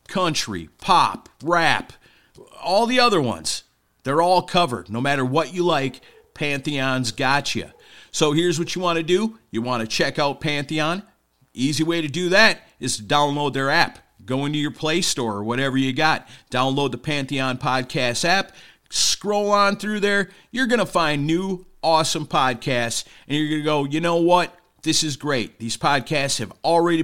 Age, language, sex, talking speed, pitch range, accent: 50-69, English, male, 175 wpm, 125-170 Hz, American